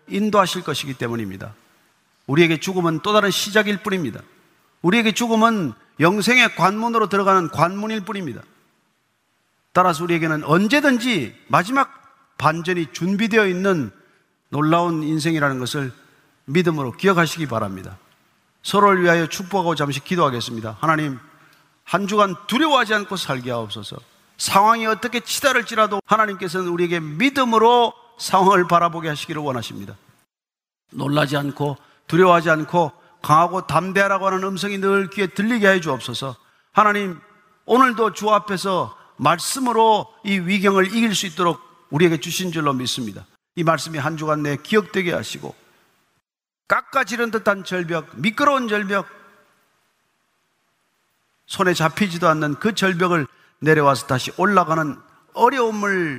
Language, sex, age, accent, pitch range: Korean, male, 40-59, native, 155-210 Hz